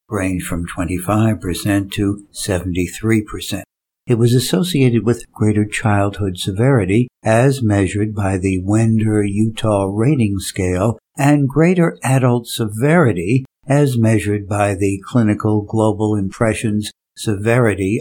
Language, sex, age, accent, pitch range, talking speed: English, male, 60-79, American, 105-125 Hz, 105 wpm